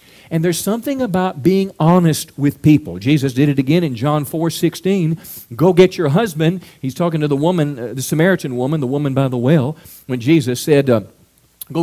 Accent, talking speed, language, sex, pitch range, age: American, 200 wpm, English, male, 115-170 Hz, 40-59